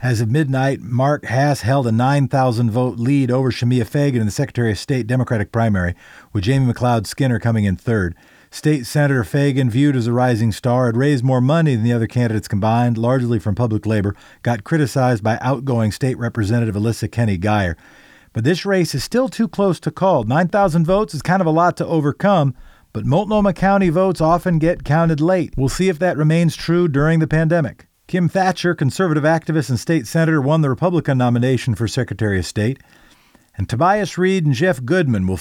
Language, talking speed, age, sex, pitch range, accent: English, 190 wpm, 50-69, male, 120-160 Hz, American